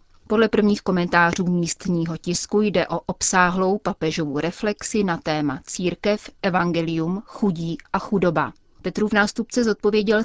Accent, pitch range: native, 165-200 Hz